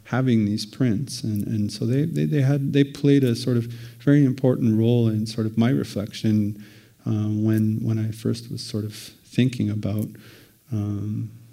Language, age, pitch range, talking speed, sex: English, 40-59, 105-120 Hz, 175 wpm, male